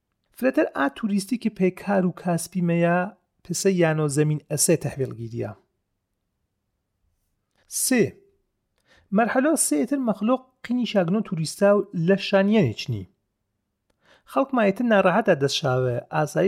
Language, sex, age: Persian, male, 40-59